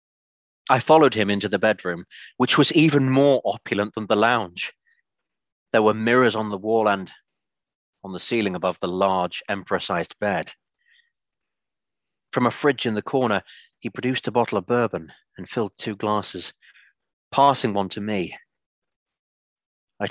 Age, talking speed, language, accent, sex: 30-49, 150 wpm, English, British, male